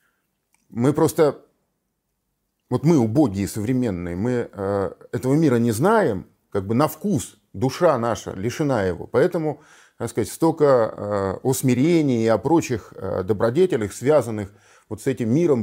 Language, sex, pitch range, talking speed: Russian, male, 105-140 Hz, 130 wpm